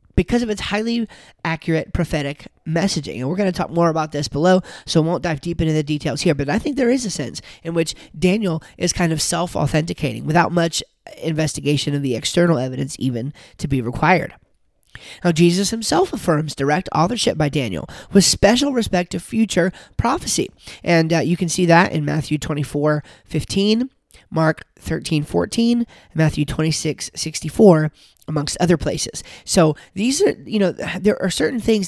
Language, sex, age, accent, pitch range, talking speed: English, male, 30-49, American, 150-185 Hz, 175 wpm